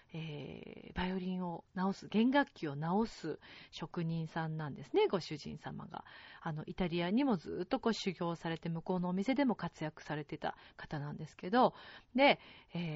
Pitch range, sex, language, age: 165-245 Hz, female, Japanese, 40-59